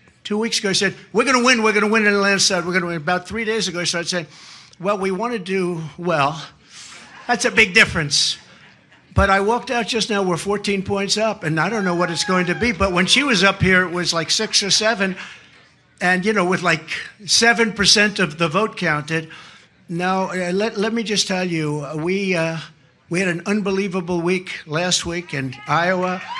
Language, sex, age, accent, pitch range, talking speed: English, male, 60-79, American, 175-215 Hz, 220 wpm